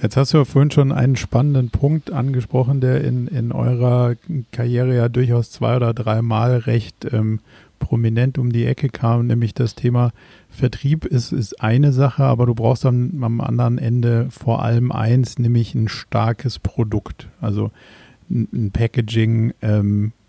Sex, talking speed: male, 155 wpm